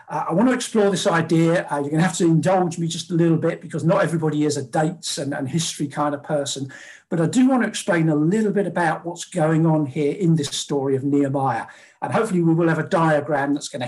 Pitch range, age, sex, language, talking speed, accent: 150-195 Hz, 50-69, male, English, 260 wpm, British